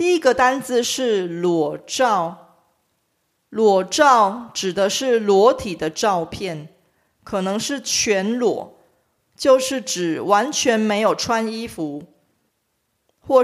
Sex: female